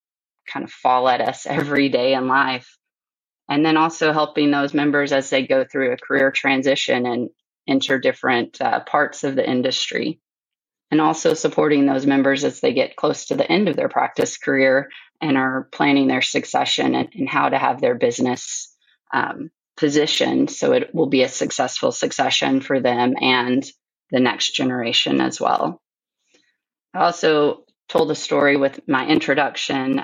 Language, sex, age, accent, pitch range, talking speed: English, female, 30-49, American, 130-150 Hz, 165 wpm